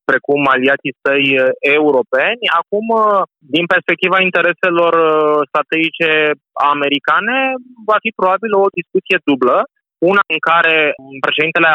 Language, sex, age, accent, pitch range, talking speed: Romanian, male, 20-39, native, 145-180 Hz, 100 wpm